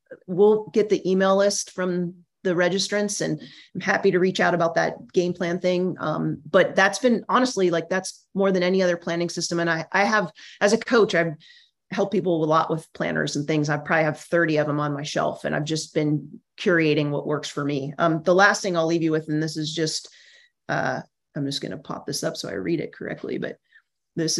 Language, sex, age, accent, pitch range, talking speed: English, male, 30-49, American, 155-195 Hz, 230 wpm